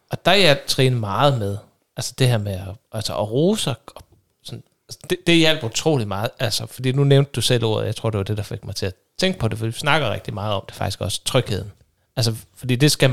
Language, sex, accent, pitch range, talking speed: Danish, male, native, 110-140 Hz, 250 wpm